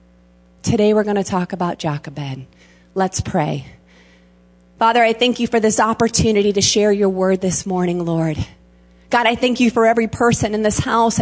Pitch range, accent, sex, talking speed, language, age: 165-235 Hz, American, female, 175 wpm, English, 40-59